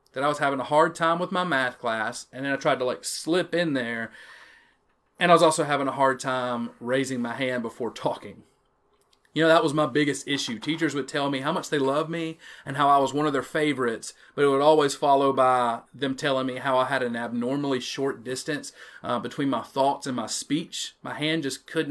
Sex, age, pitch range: male, 30-49, 130-150 Hz